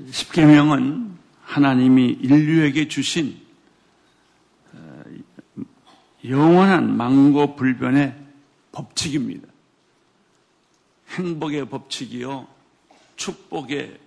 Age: 50-69